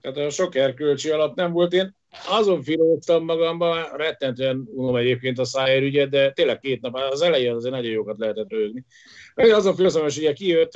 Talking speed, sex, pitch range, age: 175 wpm, male, 115-170 Hz, 50-69